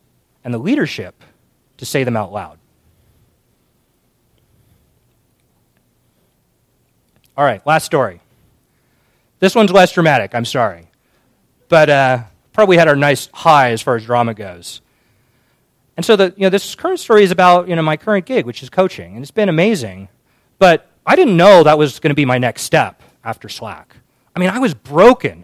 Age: 30-49